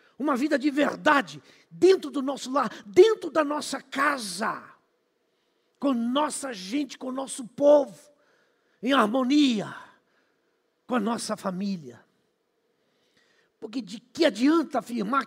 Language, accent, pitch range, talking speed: Portuguese, Brazilian, 260-345 Hz, 120 wpm